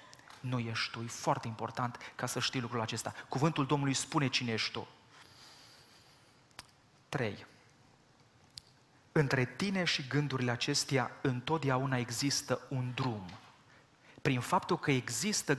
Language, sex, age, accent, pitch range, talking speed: Romanian, male, 30-49, native, 120-145 Hz, 120 wpm